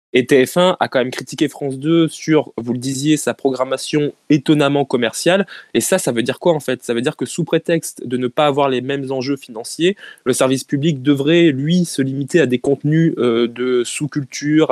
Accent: French